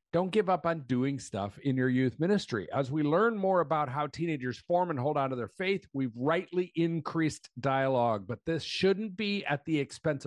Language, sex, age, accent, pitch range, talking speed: English, male, 50-69, American, 130-180 Hz, 205 wpm